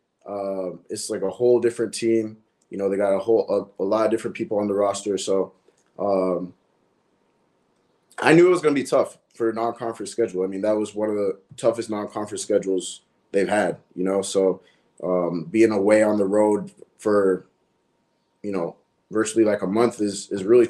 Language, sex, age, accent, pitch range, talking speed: English, male, 20-39, American, 95-115 Hz, 195 wpm